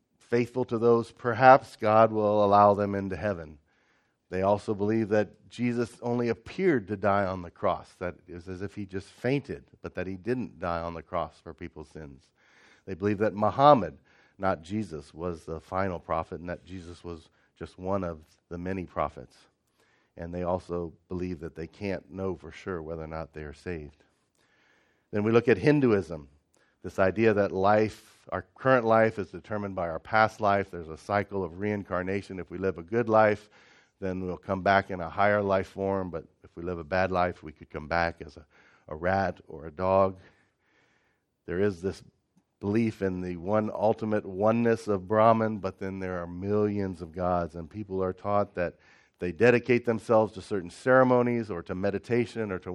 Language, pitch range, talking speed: English, 85-105 Hz, 190 wpm